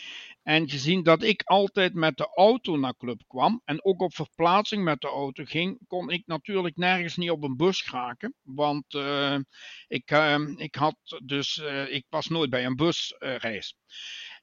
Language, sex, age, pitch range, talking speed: Dutch, male, 60-79, 150-185 Hz, 185 wpm